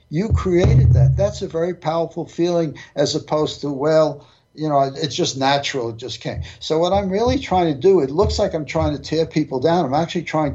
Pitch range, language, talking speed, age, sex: 140-170 Hz, English, 220 wpm, 60-79, male